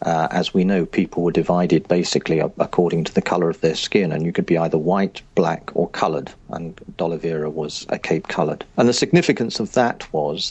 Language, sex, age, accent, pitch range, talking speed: English, male, 50-69, British, 85-105 Hz, 205 wpm